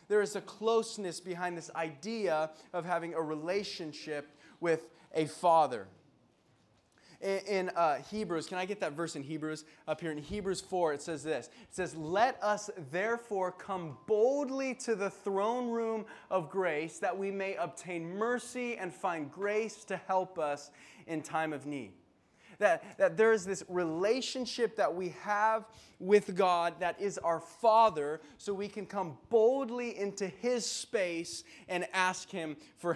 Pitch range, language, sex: 160-205 Hz, English, male